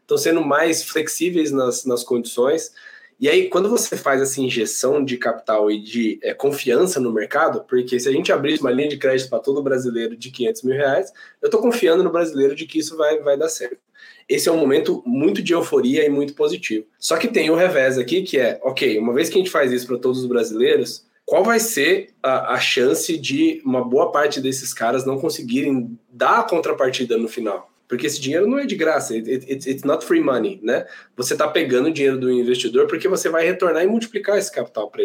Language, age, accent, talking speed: Portuguese, 20-39, Brazilian, 215 wpm